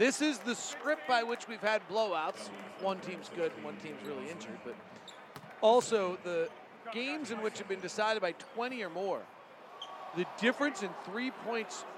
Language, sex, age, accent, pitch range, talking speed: English, male, 40-59, American, 180-240 Hz, 170 wpm